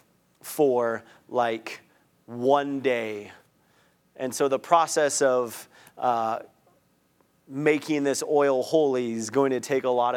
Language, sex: English, male